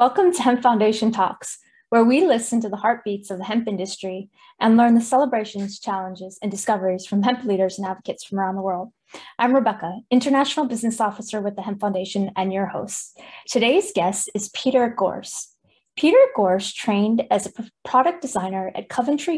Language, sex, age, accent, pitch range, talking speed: English, female, 20-39, American, 200-250 Hz, 175 wpm